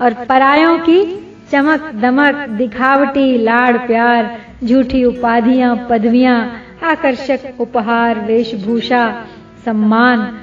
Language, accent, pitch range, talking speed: Hindi, native, 230-270 Hz, 85 wpm